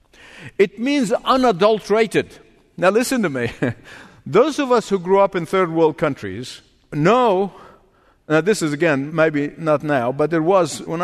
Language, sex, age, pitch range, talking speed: English, male, 50-69, 160-230 Hz, 160 wpm